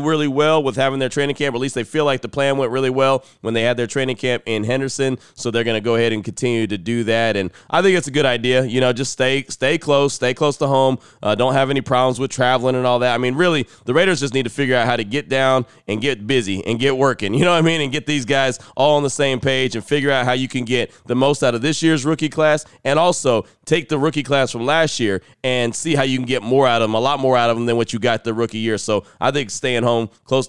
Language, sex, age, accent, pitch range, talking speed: English, male, 30-49, American, 115-140 Hz, 295 wpm